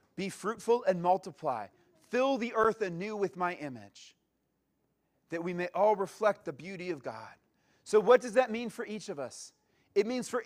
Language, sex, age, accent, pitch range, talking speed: English, male, 30-49, American, 195-235 Hz, 185 wpm